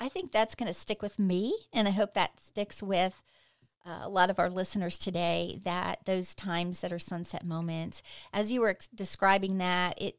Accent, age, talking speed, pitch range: American, 40-59, 205 wpm, 180-215 Hz